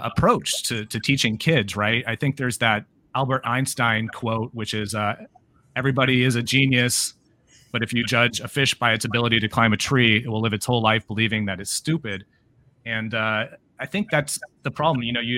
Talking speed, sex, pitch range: 205 wpm, male, 110-125 Hz